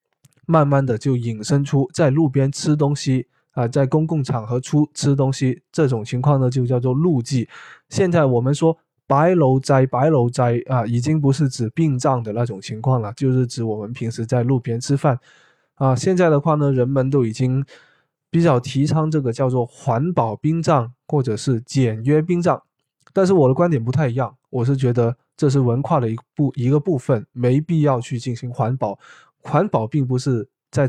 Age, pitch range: 20-39, 120-145 Hz